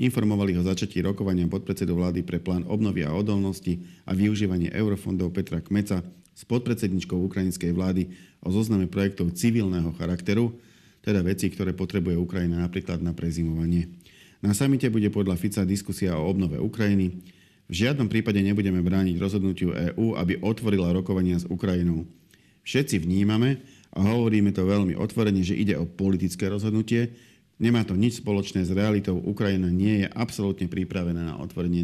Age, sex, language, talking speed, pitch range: 40-59, male, Slovak, 150 wpm, 90-105 Hz